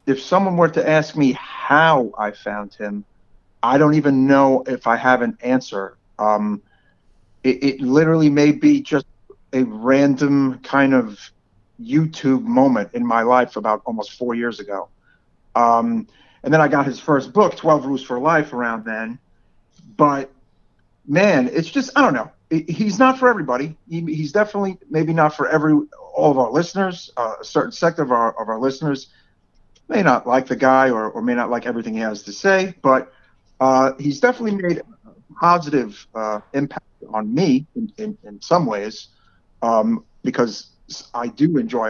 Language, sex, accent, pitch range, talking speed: English, male, American, 110-155 Hz, 175 wpm